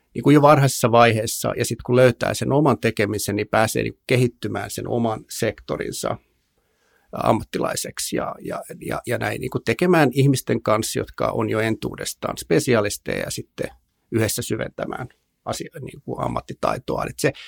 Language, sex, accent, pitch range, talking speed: Finnish, male, native, 105-125 Hz, 150 wpm